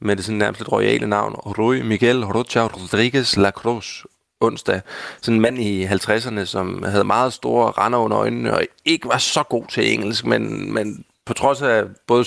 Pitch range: 110-140 Hz